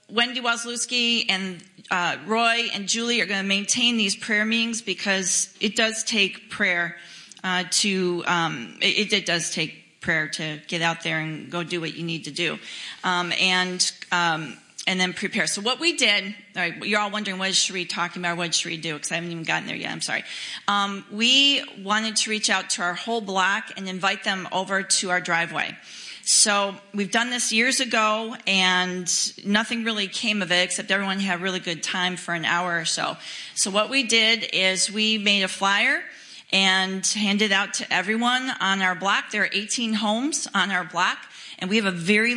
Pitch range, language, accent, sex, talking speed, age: 185-220 Hz, English, American, female, 205 wpm, 40-59